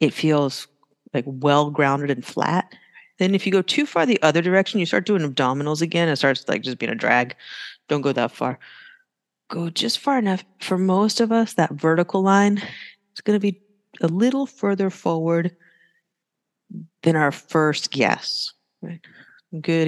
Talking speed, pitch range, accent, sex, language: 165 wpm, 145-200 Hz, American, female, English